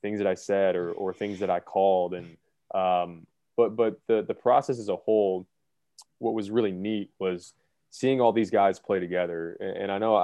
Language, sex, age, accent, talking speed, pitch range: English, male, 20-39, American, 200 wpm, 90-105 Hz